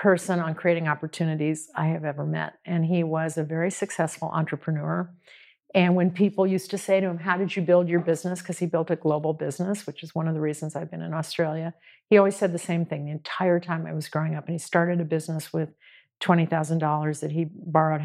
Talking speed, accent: 225 wpm, American